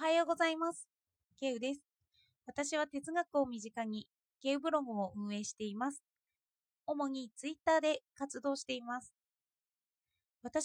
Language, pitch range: Japanese, 215-320 Hz